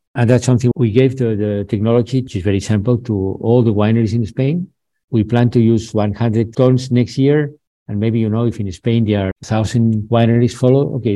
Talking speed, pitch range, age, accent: 210 wpm, 105-120 Hz, 50-69, Spanish